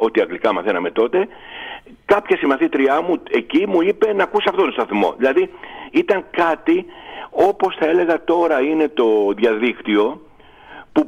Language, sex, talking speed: Greek, male, 140 wpm